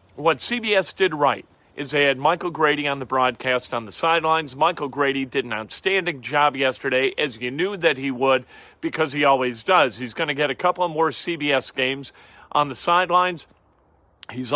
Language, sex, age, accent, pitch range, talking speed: English, male, 40-59, American, 120-155 Hz, 190 wpm